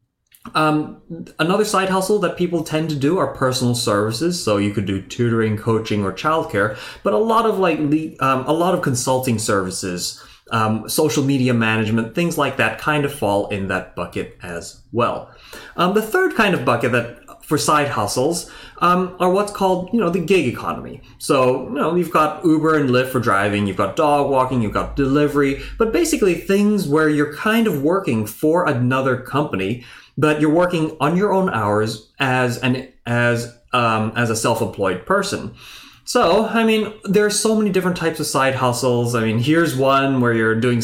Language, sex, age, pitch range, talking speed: English, male, 30-49, 115-180 Hz, 185 wpm